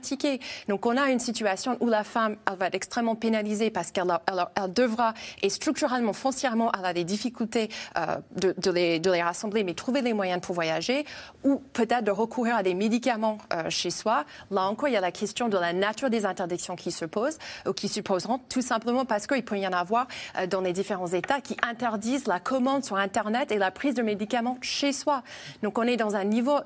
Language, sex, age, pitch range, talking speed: French, female, 30-49, 190-245 Hz, 225 wpm